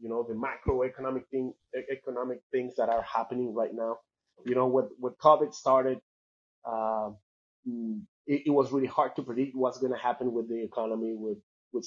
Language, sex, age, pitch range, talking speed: English, male, 30-49, 115-135 Hz, 175 wpm